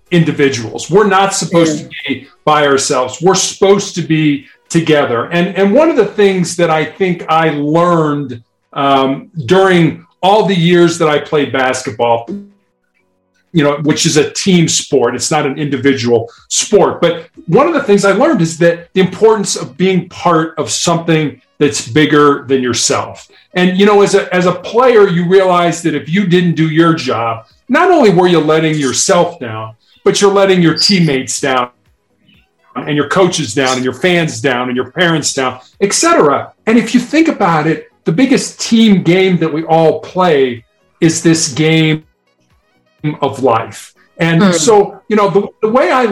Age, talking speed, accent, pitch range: 40-59, 175 wpm, American, 140-195 Hz